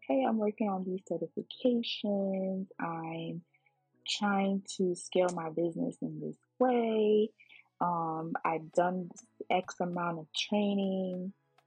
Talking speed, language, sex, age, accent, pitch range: 115 wpm, English, female, 20-39, American, 165-210 Hz